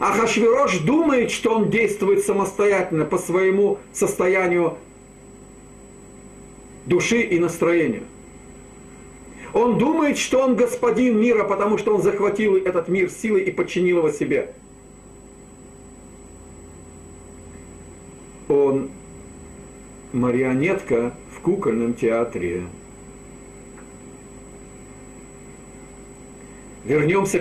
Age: 50-69